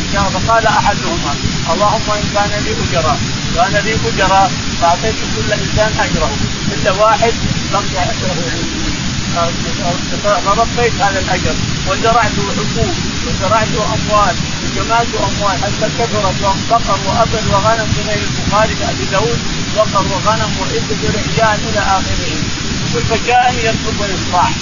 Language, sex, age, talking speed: Arabic, male, 30-49, 105 wpm